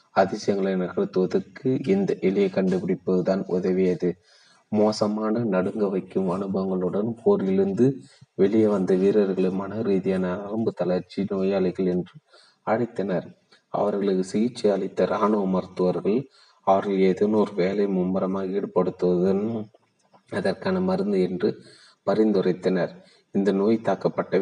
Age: 30-49